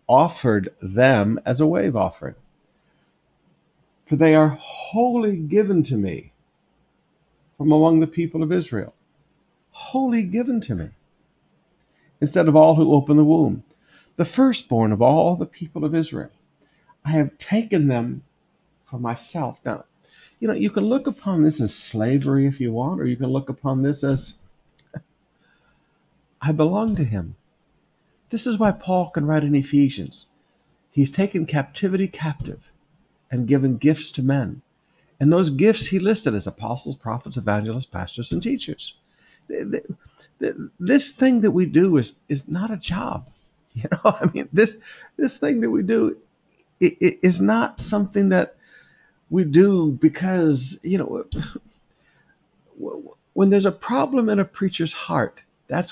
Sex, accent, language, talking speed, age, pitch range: male, American, English, 145 wpm, 50-69, 135-195 Hz